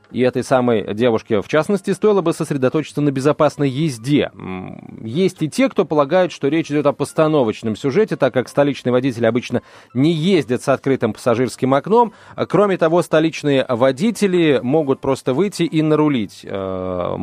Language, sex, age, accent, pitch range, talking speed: Russian, male, 30-49, native, 120-165 Hz, 155 wpm